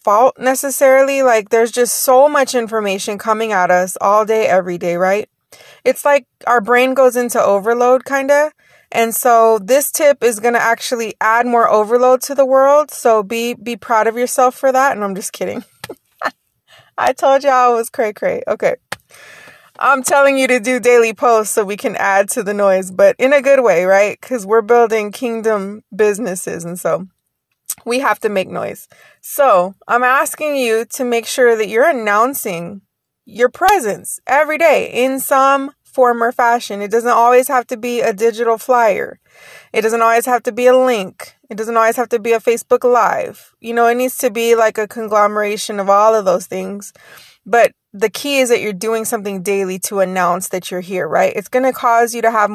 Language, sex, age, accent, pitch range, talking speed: English, female, 20-39, American, 210-255 Hz, 195 wpm